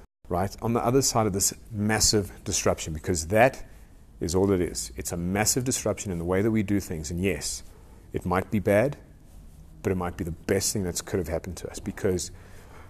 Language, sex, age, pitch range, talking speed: English, male, 30-49, 90-120 Hz, 215 wpm